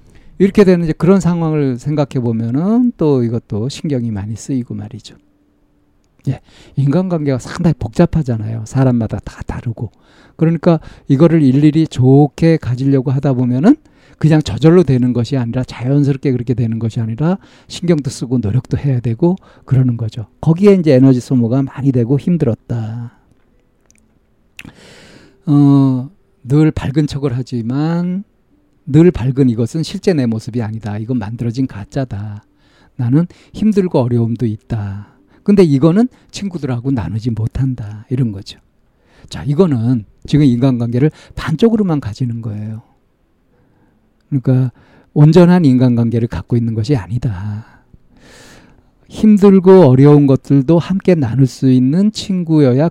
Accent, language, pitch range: native, Korean, 115-155 Hz